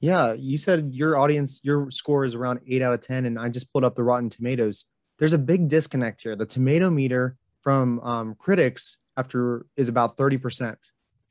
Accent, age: American, 20-39